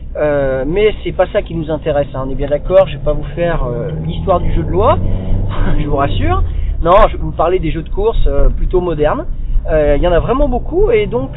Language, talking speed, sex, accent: French, 255 wpm, male, French